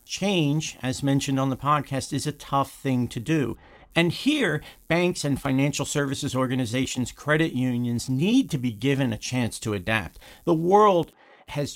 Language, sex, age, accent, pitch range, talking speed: English, male, 50-69, American, 125-170 Hz, 165 wpm